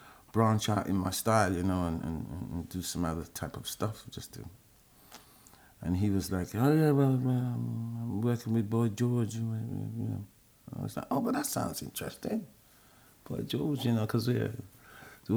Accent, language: British, Swedish